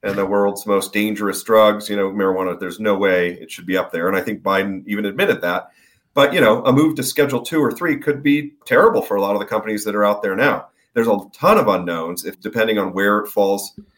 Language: English